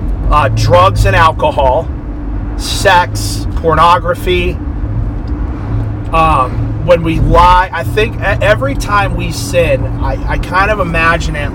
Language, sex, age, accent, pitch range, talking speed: English, male, 30-49, American, 75-105 Hz, 115 wpm